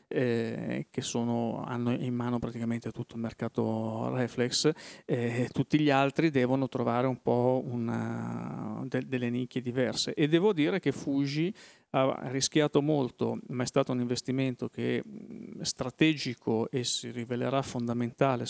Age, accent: 40-59, native